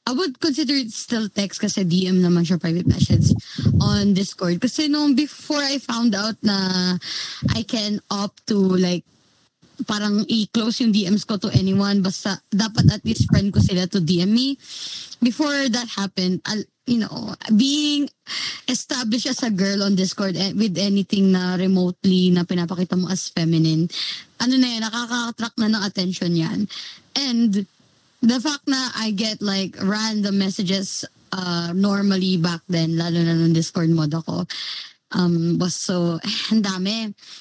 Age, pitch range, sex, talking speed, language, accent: 20-39, 185-235 Hz, female, 155 wpm, Filipino, native